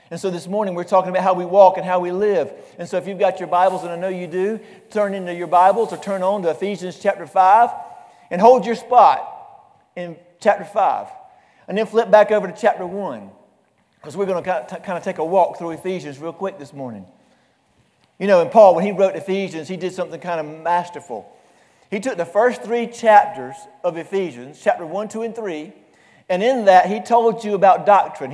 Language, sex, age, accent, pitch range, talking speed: English, male, 50-69, American, 180-225 Hz, 215 wpm